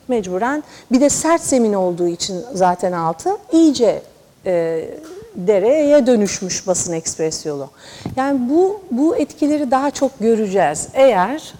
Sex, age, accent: female, 50-69, native